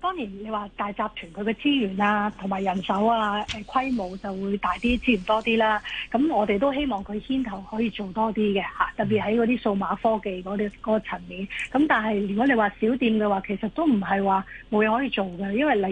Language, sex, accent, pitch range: Chinese, female, native, 200-240 Hz